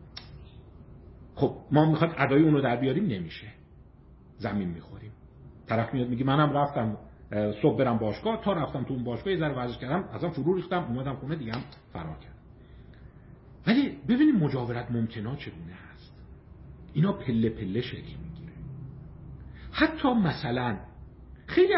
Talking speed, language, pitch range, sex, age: 140 wpm, Persian, 105-165 Hz, male, 50-69